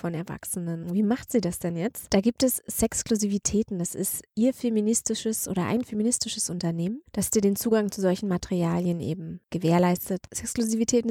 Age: 20-39